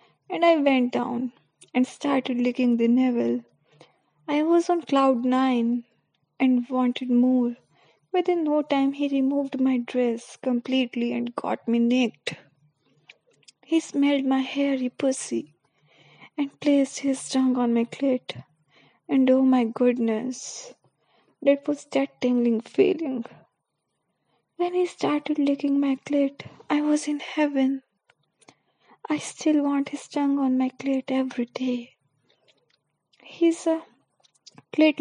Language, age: Hindi, 20-39